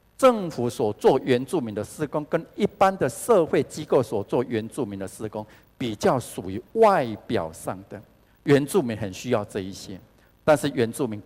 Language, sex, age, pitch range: Chinese, male, 50-69, 105-145 Hz